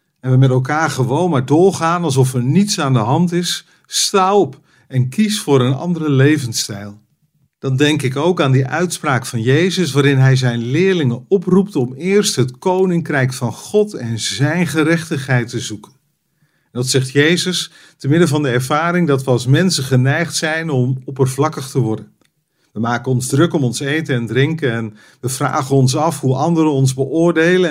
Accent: Dutch